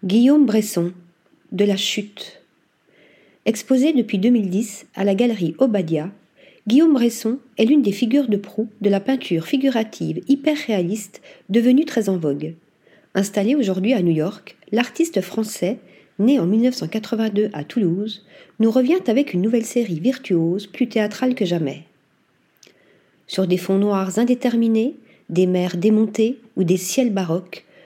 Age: 40-59